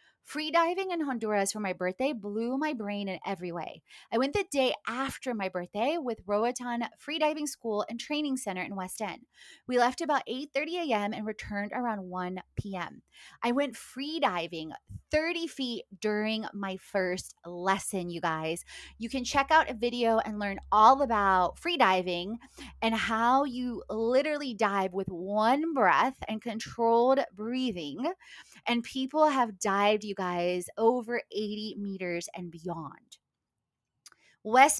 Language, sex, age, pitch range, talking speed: English, female, 20-39, 195-270 Hz, 155 wpm